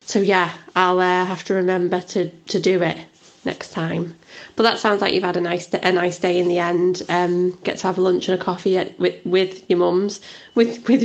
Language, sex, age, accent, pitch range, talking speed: English, female, 20-39, British, 180-215 Hz, 235 wpm